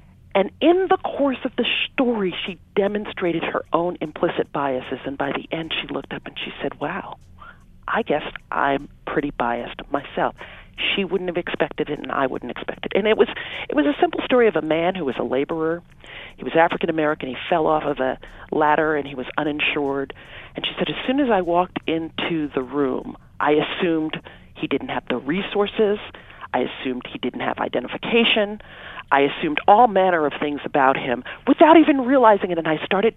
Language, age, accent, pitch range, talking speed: English, 40-59, American, 140-200 Hz, 195 wpm